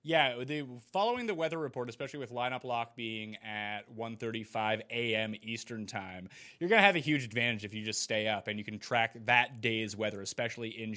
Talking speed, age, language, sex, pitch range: 195 wpm, 30-49, English, male, 110-150 Hz